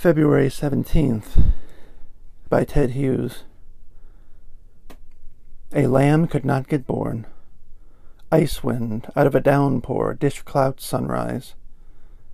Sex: male